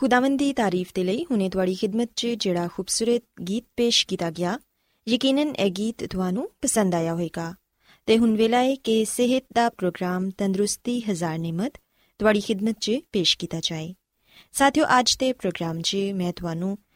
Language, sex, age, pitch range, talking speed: Punjabi, female, 20-39, 180-250 Hz, 150 wpm